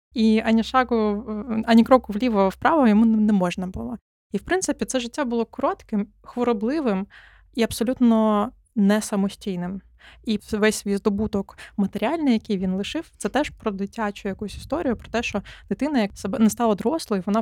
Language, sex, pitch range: Ukrainian, female, 195-225 Hz